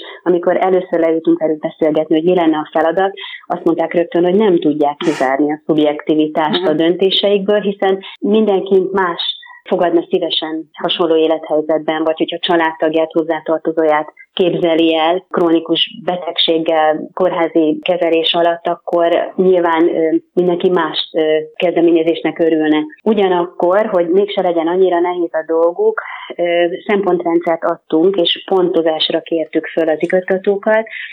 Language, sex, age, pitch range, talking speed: Hungarian, female, 30-49, 160-180 Hz, 120 wpm